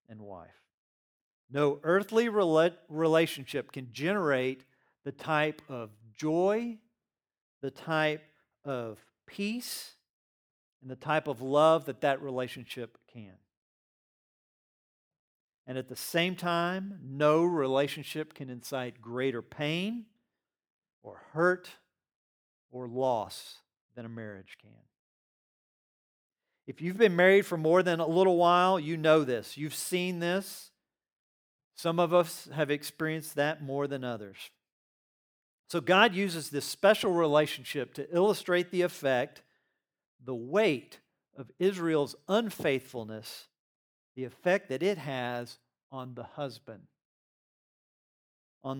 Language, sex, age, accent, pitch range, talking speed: English, male, 40-59, American, 125-170 Hz, 115 wpm